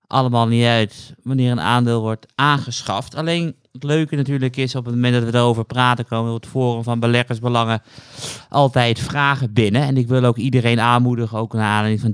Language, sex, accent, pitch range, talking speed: Dutch, male, Dutch, 115-135 Hz, 185 wpm